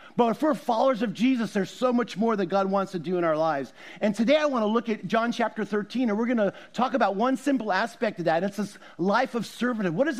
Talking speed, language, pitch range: 275 wpm, English, 170-225 Hz